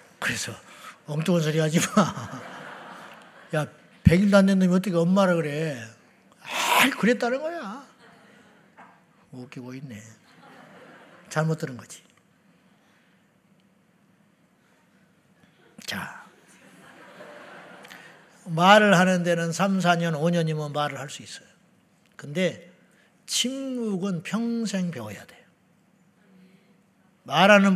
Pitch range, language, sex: 155-200 Hz, Korean, male